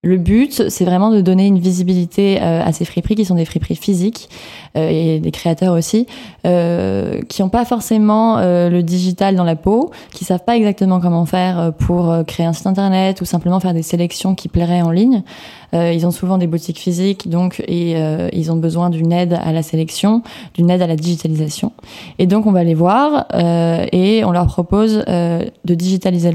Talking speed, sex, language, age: 195 wpm, female, French, 20-39